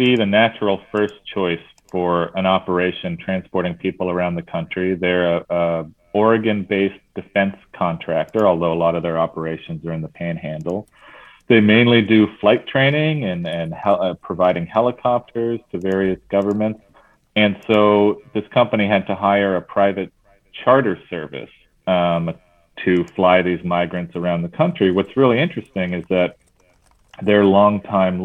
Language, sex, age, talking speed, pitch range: English, male, 40-59, 145 wpm, 90-105 Hz